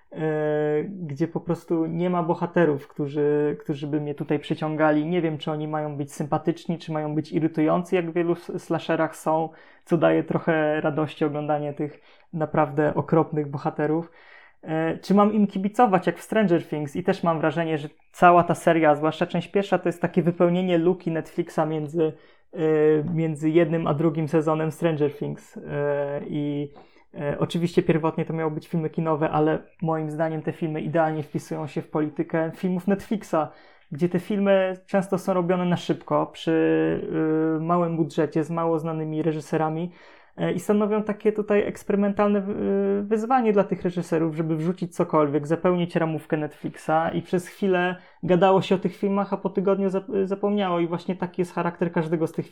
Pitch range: 155-180 Hz